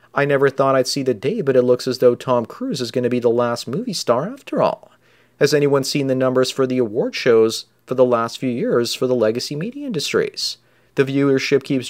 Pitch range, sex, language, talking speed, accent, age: 125-140 Hz, male, English, 230 wpm, American, 30-49